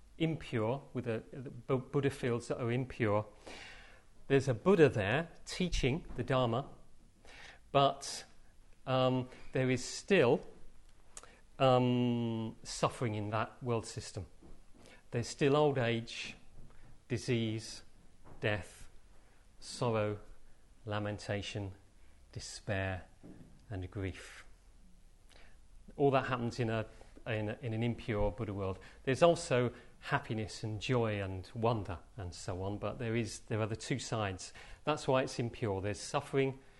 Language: English